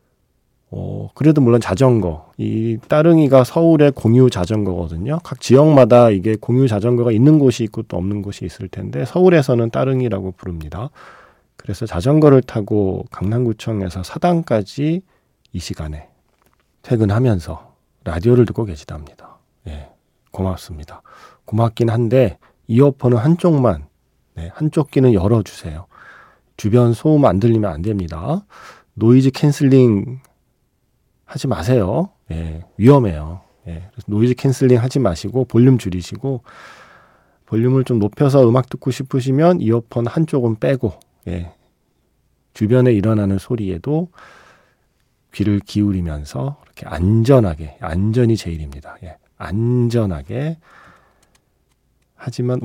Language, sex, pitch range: Korean, male, 95-130 Hz